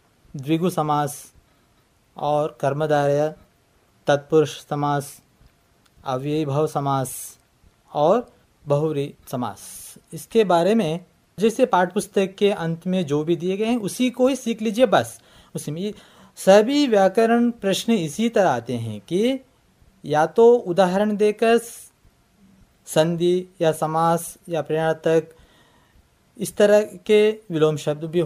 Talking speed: 115 wpm